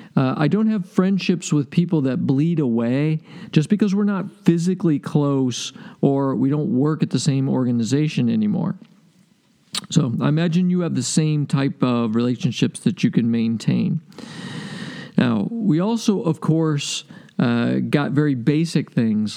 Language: English